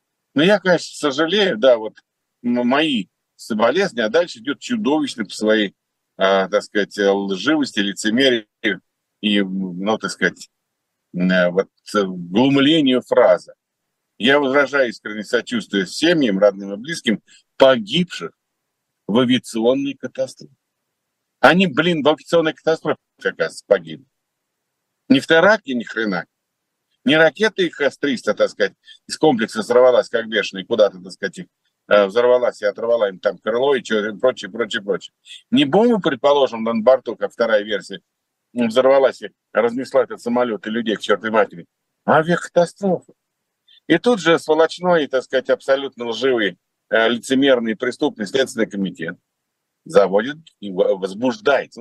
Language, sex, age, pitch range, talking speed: Russian, male, 50-69, 115-175 Hz, 130 wpm